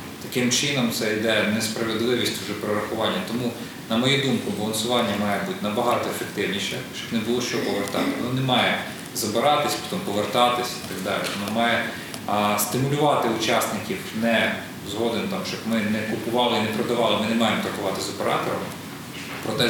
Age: 30-49